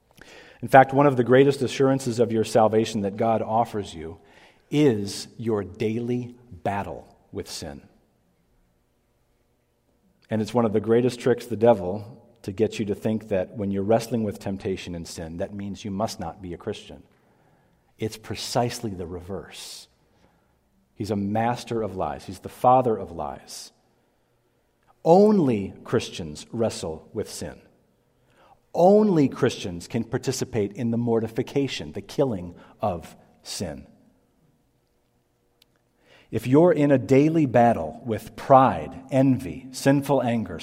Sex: male